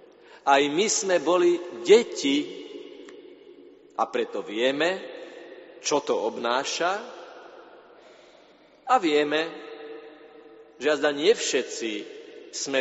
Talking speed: 85 wpm